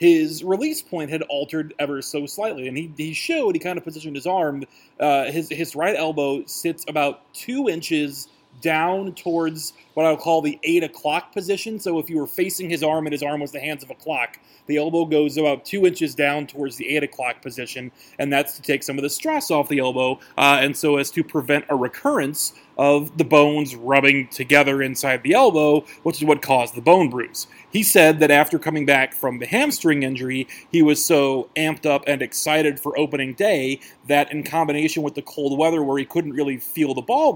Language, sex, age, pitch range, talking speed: English, male, 30-49, 140-165 Hz, 215 wpm